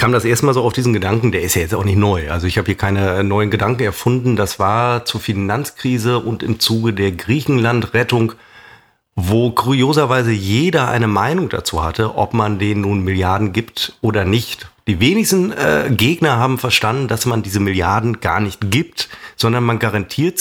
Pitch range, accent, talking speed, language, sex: 100-125 Hz, German, 180 wpm, German, male